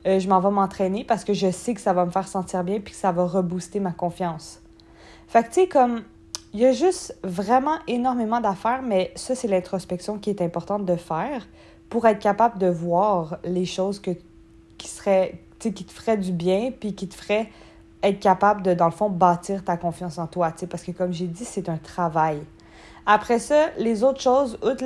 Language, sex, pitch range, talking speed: French, female, 185-225 Hz, 220 wpm